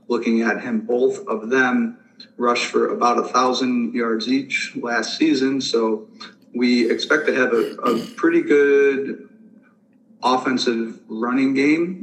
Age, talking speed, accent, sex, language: 40-59, 135 wpm, American, male, English